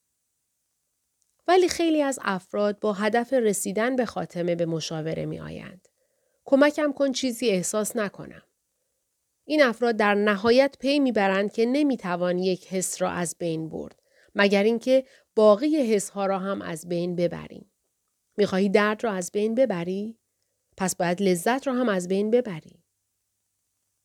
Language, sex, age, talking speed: Persian, female, 40-59, 140 wpm